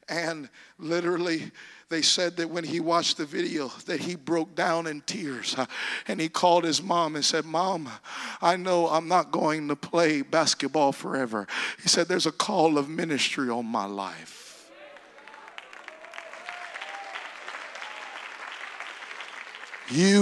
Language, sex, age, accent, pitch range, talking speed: English, male, 50-69, American, 160-190 Hz, 130 wpm